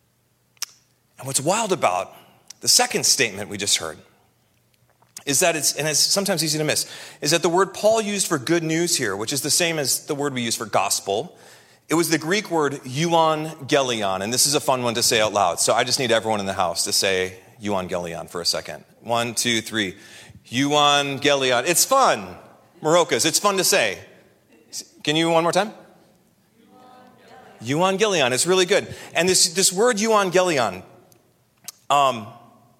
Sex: male